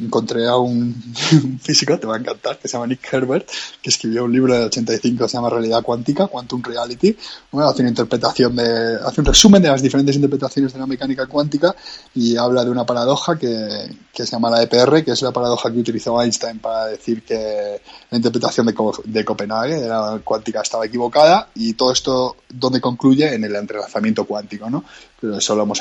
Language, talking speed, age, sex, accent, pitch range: Spanish, 205 wpm, 20-39, male, Spanish, 115-135 Hz